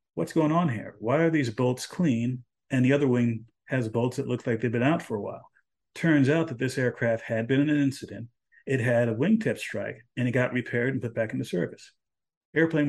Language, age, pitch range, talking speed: English, 50-69, 120-140 Hz, 230 wpm